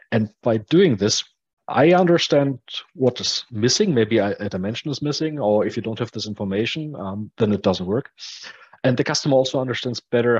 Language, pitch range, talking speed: English, 100-130 Hz, 190 wpm